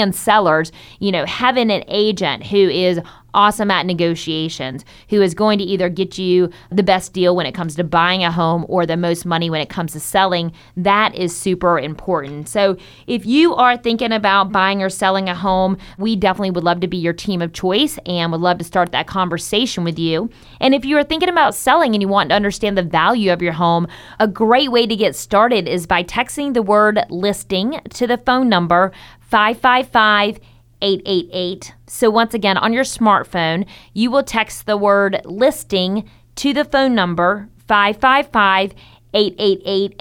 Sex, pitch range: female, 175-225 Hz